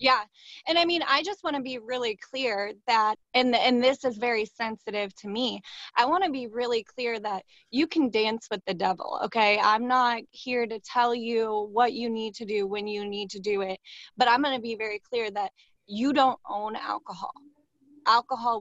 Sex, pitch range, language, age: female, 205-250 Hz, English, 20-39